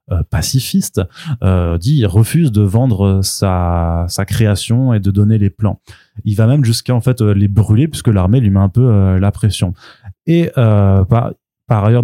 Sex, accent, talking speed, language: male, French, 185 wpm, French